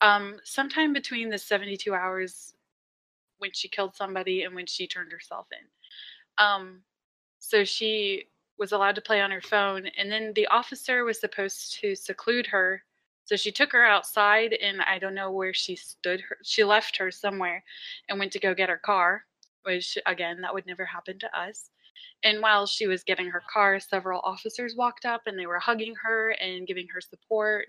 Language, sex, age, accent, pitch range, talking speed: English, female, 20-39, American, 185-220 Hz, 185 wpm